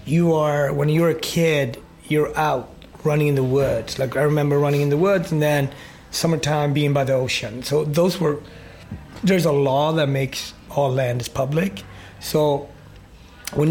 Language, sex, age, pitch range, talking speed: English, male, 30-49, 135-155 Hz, 175 wpm